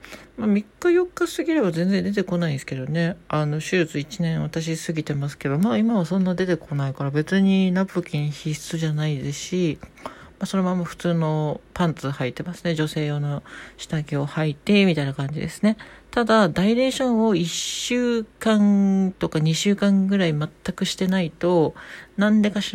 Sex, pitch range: male, 155-205 Hz